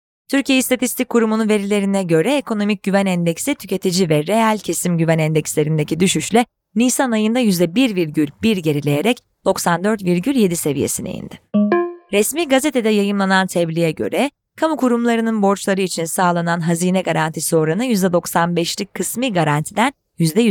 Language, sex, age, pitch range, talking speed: Turkish, female, 30-49, 170-240 Hz, 115 wpm